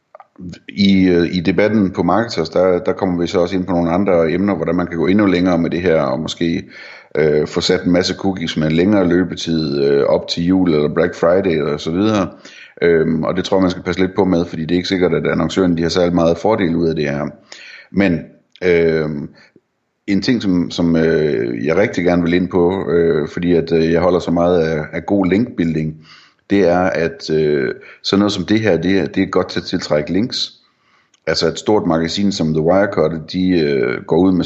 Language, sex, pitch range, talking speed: Danish, male, 80-95 Hz, 220 wpm